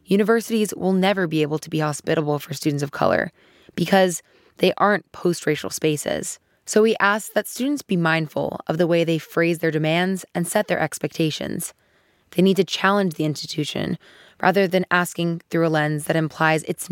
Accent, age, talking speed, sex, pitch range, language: American, 20-39, 175 wpm, female, 155-195 Hz, English